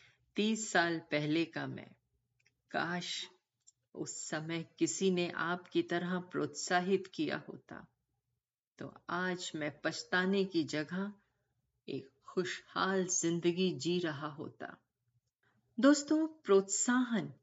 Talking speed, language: 100 wpm, Hindi